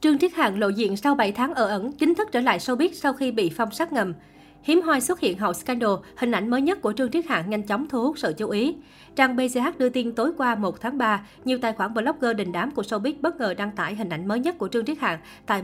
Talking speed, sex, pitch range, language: 275 wpm, female, 200-260 Hz, Vietnamese